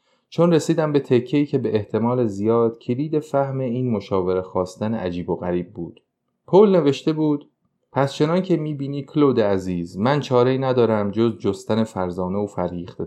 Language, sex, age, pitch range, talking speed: Persian, male, 30-49, 100-130 Hz, 155 wpm